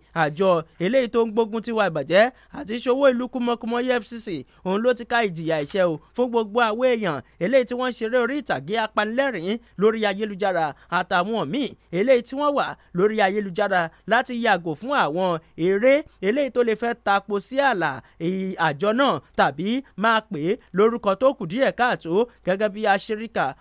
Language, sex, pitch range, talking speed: English, male, 185-235 Hz, 170 wpm